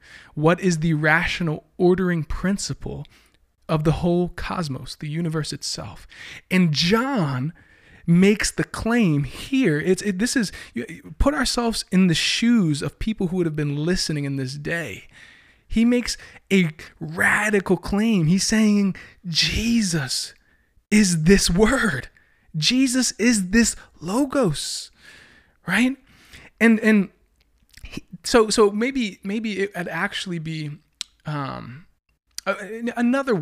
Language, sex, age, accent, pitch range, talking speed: English, male, 20-39, American, 155-210 Hz, 115 wpm